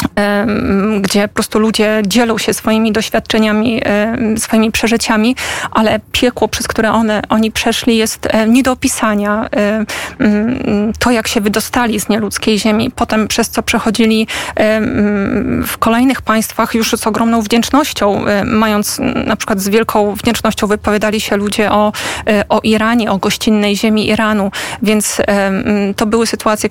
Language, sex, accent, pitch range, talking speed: Polish, female, native, 210-230 Hz, 130 wpm